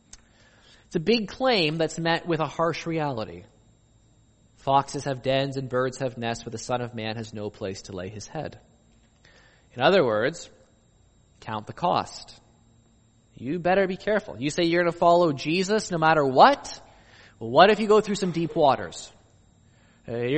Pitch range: 115-175 Hz